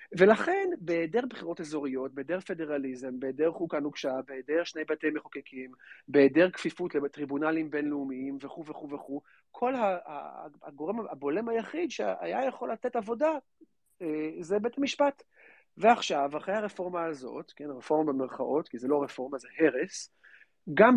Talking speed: 130 wpm